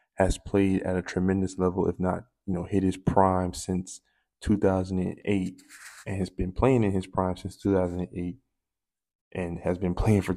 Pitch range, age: 90-95 Hz, 20-39